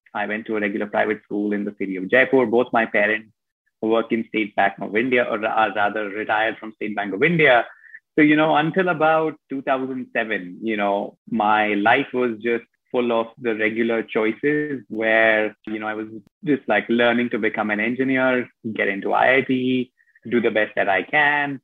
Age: 30-49